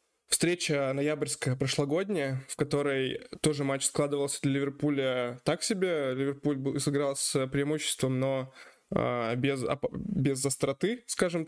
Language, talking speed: Russian, 110 wpm